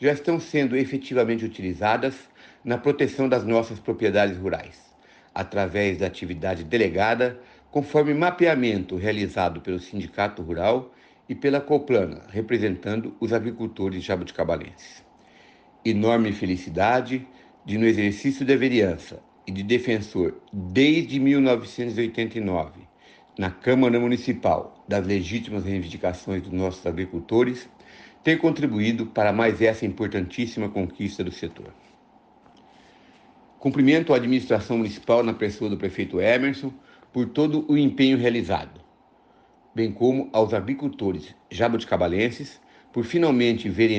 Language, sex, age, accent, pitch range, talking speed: Portuguese, male, 60-79, Brazilian, 100-130 Hz, 110 wpm